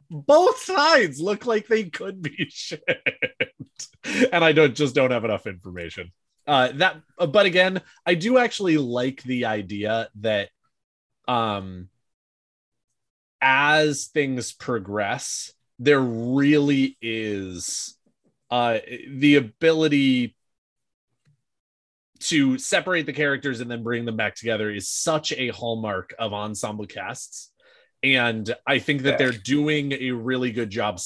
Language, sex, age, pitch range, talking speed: English, male, 20-39, 105-145 Hz, 125 wpm